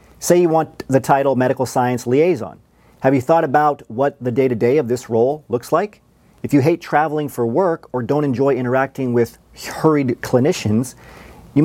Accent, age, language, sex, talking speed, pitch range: American, 40-59, English, male, 185 wpm, 125-160 Hz